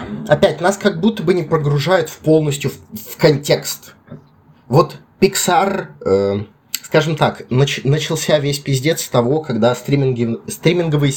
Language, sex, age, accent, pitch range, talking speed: Russian, male, 20-39, native, 110-145 Hz, 135 wpm